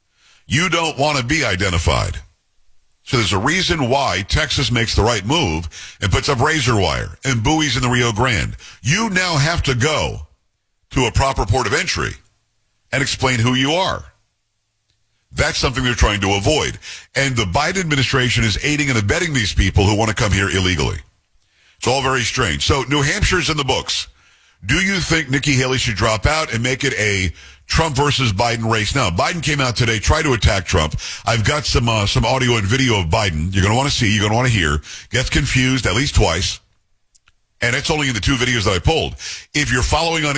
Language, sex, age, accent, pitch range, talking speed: English, male, 50-69, American, 100-135 Hz, 210 wpm